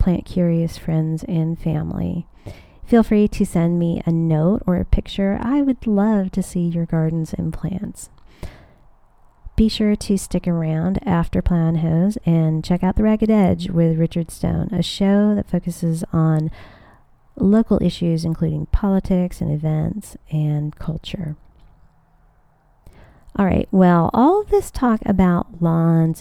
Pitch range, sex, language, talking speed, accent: 160-190 Hz, female, English, 145 wpm, American